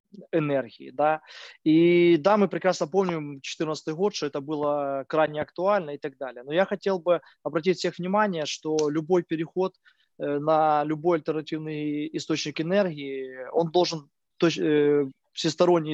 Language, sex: Ukrainian, male